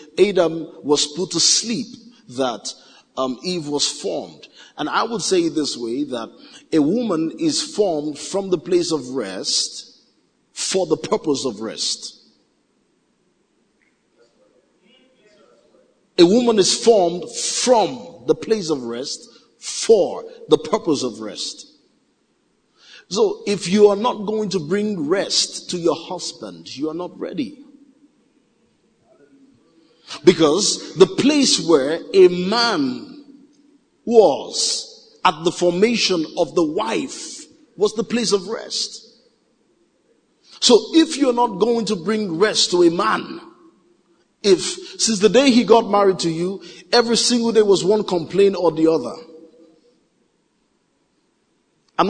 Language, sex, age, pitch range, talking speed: English, male, 50-69, 175-275 Hz, 125 wpm